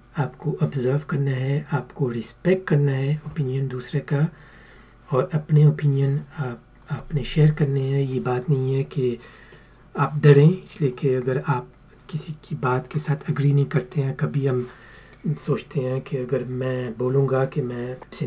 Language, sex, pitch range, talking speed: Hindi, male, 125-150 Hz, 160 wpm